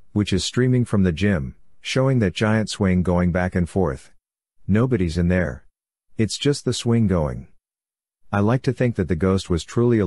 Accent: American